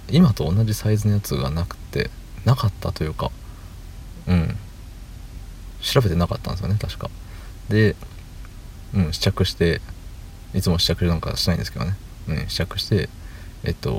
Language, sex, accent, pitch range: Japanese, male, native, 85-105 Hz